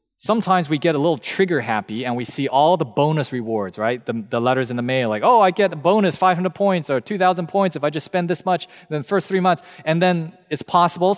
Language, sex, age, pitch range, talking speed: English, male, 20-39, 135-180 Hz, 250 wpm